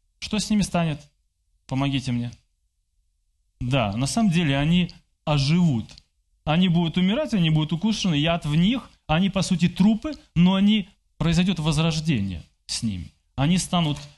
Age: 20-39